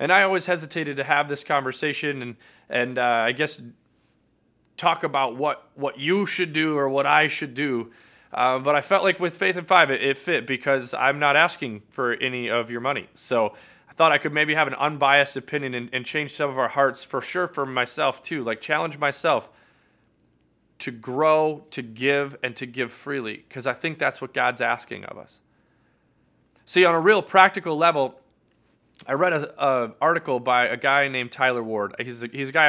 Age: 30-49